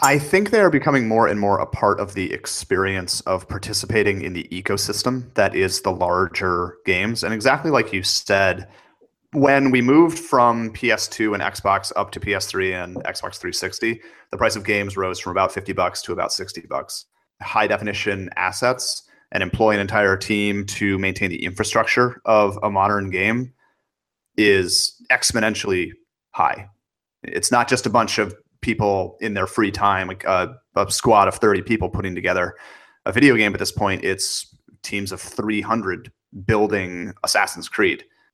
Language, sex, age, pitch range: English, male, 30-49, 95-115 Hz